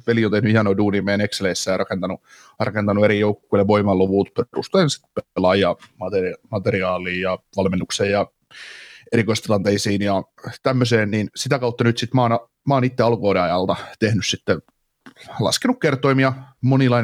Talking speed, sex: 125 wpm, male